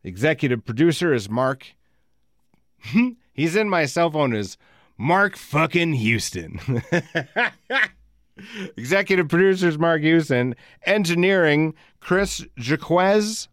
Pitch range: 100-150 Hz